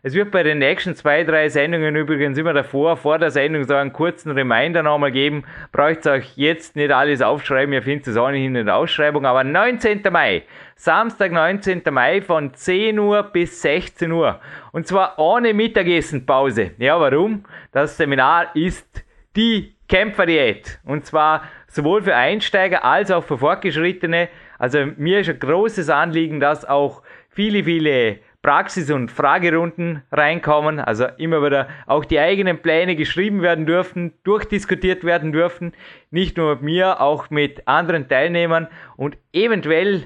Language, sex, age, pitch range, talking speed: German, male, 30-49, 145-180 Hz, 155 wpm